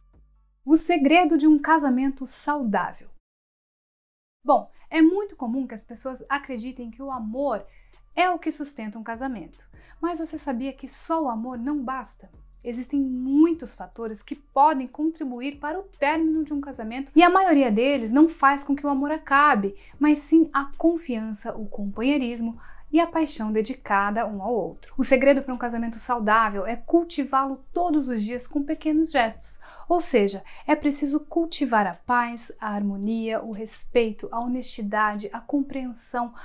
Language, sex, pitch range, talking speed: Portuguese, female, 230-300 Hz, 160 wpm